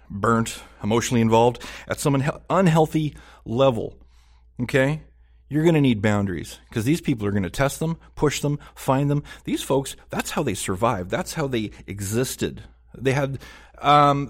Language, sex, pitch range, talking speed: English, male, 105-140 Hz, 175 wpm